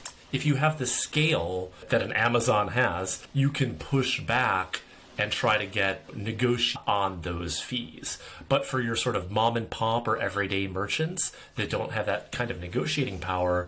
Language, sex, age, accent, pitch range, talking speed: English, male, 30-49, American, 95-130 Hz, 175 wpm